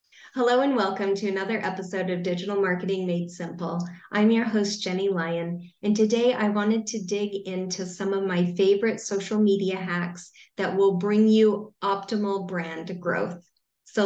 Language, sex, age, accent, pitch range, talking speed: English, female, 30-49, American, 180-215 Hz, 160 wpm